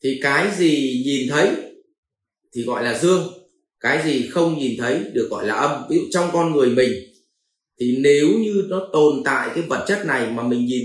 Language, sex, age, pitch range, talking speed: Vietnamese, male, 30-49, 125-190 Hz, 205 wpm